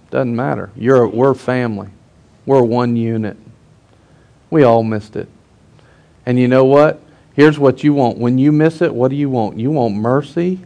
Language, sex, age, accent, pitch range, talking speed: English, male, 40-59, American, 120-160 Hz, 175 wpm